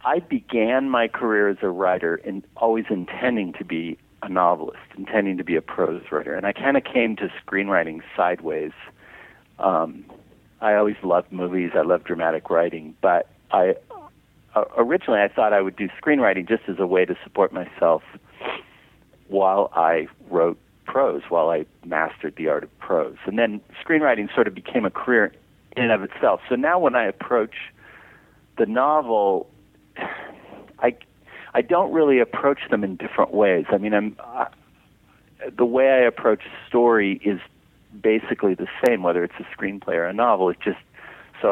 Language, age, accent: English, 40-59, American